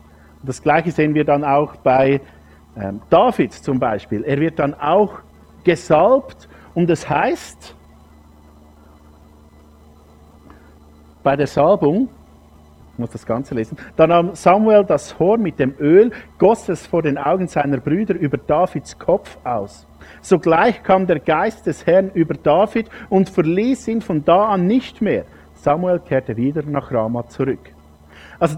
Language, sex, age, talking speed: German, male, 50-69, 145 wpm